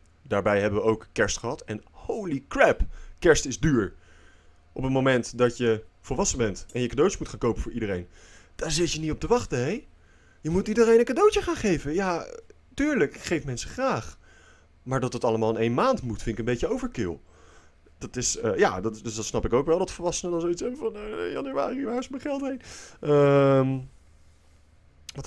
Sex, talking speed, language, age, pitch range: male, 205 wpm, Dutch, 30-49, 80-130 Hz